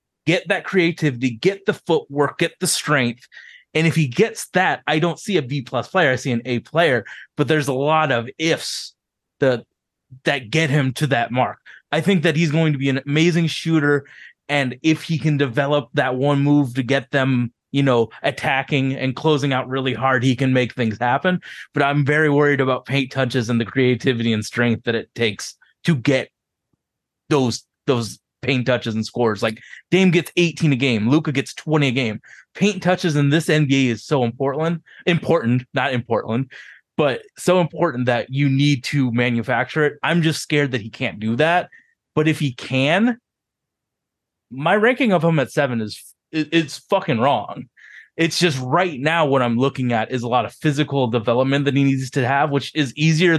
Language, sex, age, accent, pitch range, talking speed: English, male, 20-39, American, 125-160 Hz, 195 wpm